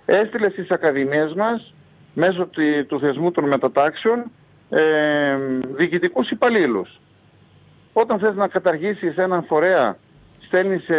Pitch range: 150-195 Hz